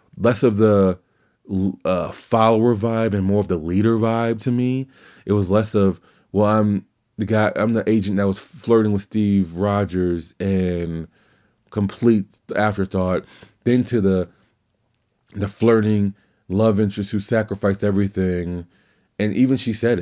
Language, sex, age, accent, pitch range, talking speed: English, male, 30-49, American, 95-115 Hz, 145 wpm